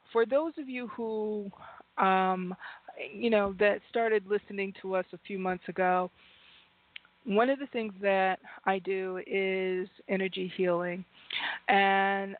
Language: English